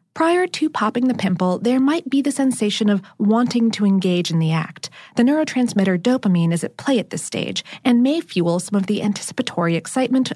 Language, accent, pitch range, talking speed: English, American, 190-265 Hz, 195 wpm